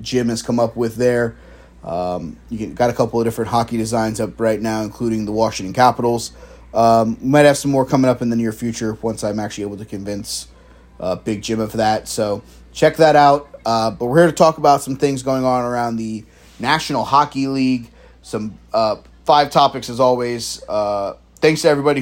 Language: English